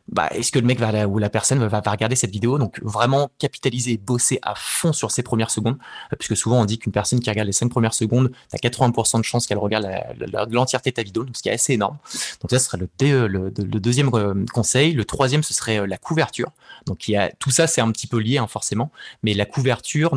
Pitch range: 105-125 Hz